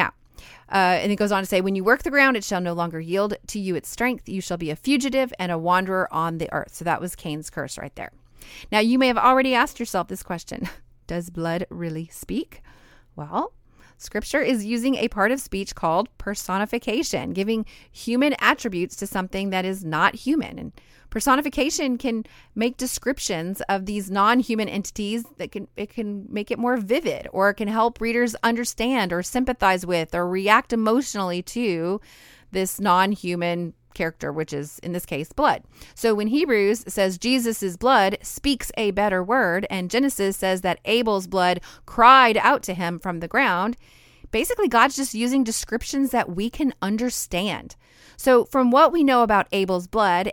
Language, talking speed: English, 180 wpm